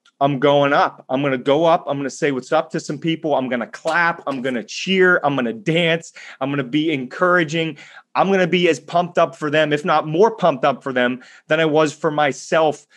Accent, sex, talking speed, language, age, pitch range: American, male, 255 wpm, English, 30-49, 140-180 Hz